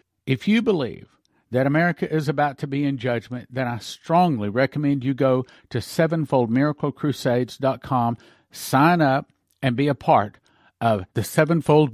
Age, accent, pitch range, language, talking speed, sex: 50-69, American, 115-155 Hz, English, 140 wpm, male